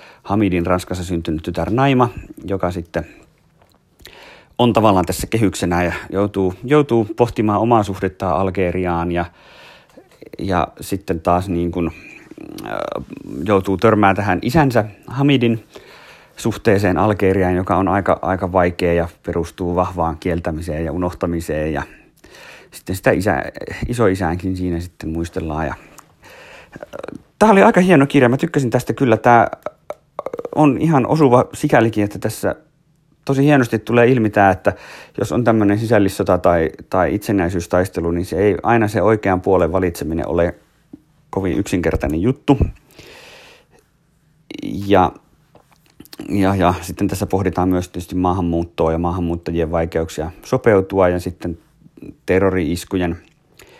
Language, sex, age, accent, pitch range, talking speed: Finnish, male, 30-49, native, 85-110 Hz, 120 wpm